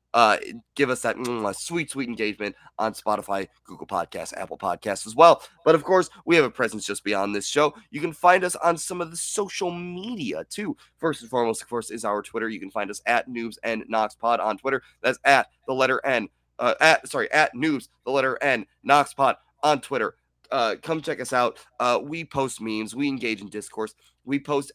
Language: English